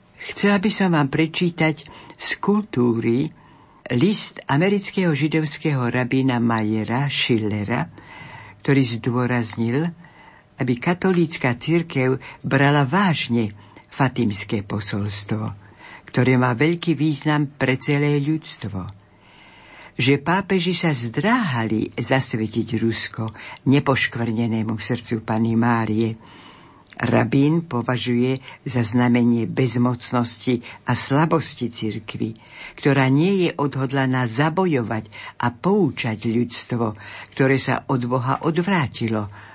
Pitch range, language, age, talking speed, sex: 115-155 Hz, Slovak, 60-79, 95 wpm, female